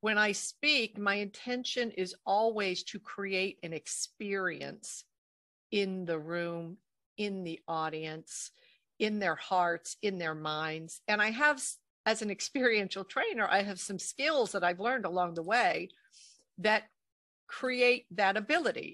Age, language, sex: 50-69, English, female